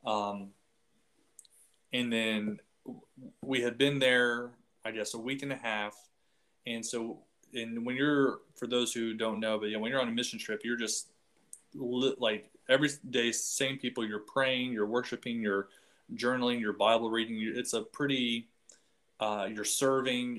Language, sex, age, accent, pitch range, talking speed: English, male, 20-39, American, 105-125 Hz, 170 wpm